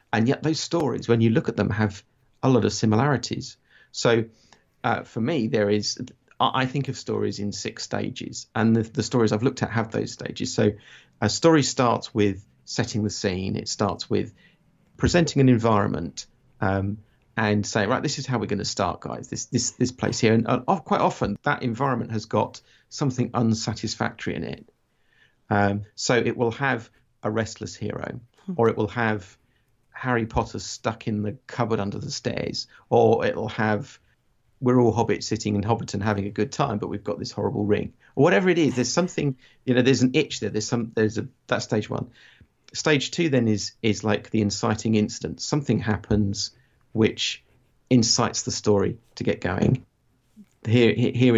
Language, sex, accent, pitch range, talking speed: English, male, British, 105-125 Hz, 185 wpm